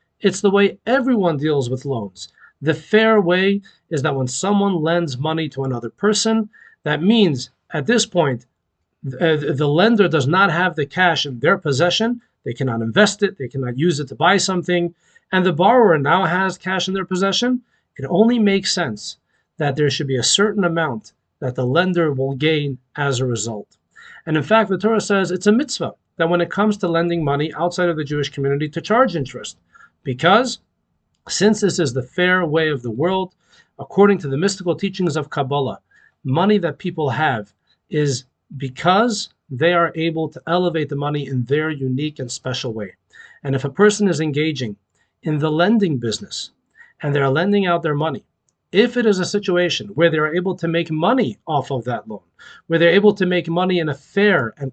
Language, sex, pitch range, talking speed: English, male, 140-190 Hz, 195 wpm